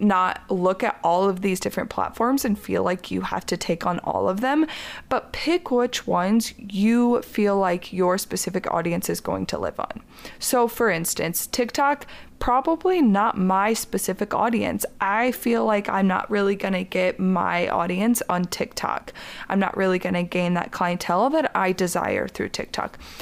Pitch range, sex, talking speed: 185-235 Hz, female, 175 wpm